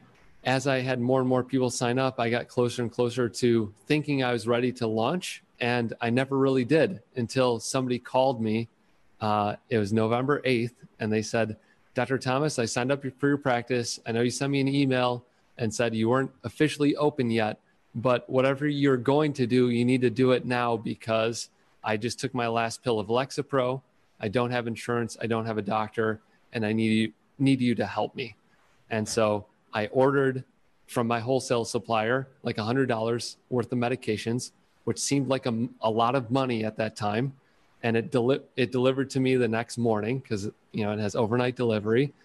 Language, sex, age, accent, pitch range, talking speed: English, male, 30-49, American, 110-130 Hz, 195 wpm